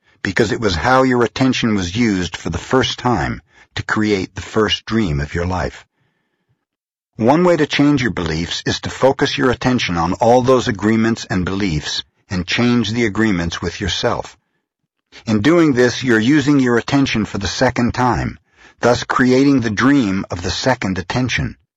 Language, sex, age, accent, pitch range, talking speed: English, male, 60-79, American, 85-120 Hz, 175 wpm